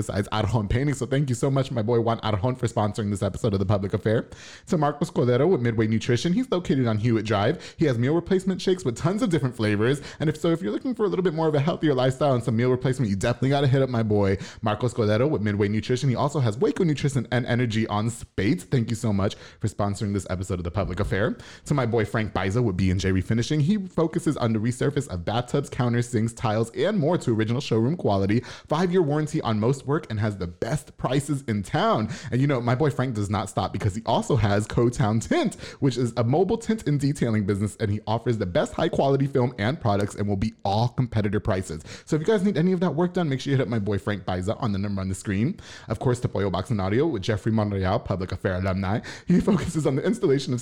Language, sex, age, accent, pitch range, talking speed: English, male, 20-39, American, 105-145 Hz, 255 wpm